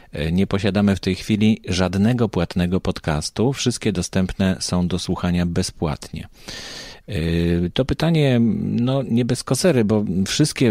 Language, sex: Polish, male